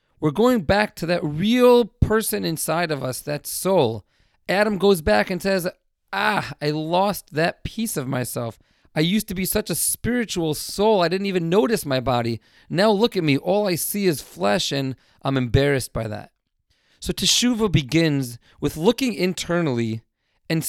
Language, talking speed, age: English, 170 wpm, 40-59